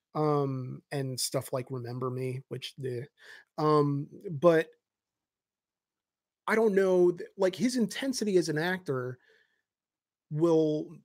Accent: American